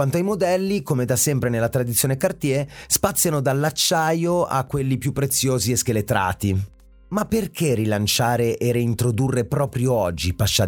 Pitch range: 110-155 Hz